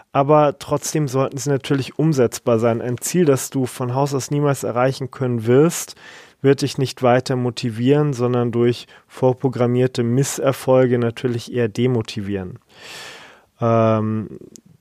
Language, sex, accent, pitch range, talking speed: German, male, German, 120-140 Hz, 125 wpm